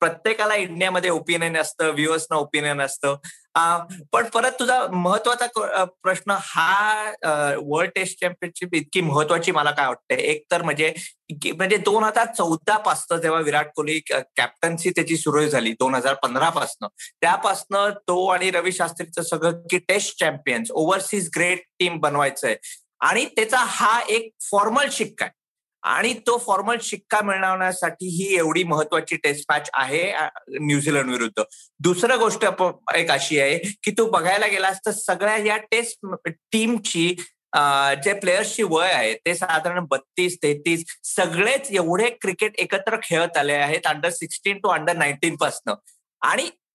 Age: 20-39